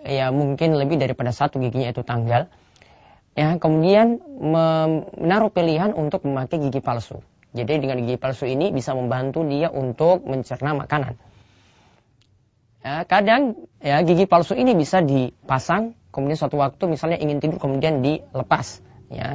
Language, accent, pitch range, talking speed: Indonesian, native, 130-165 Hz, 135 wpm